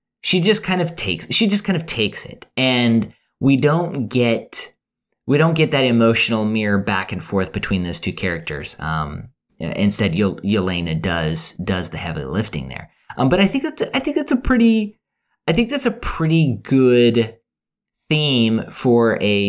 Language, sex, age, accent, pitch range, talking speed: English, male, 20-39, American, 95-135 Hz, 175 wpm